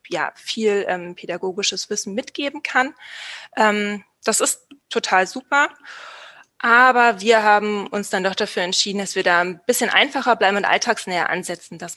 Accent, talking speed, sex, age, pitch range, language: German, 155 wpm, female, 20-39, 185-225 Hz, German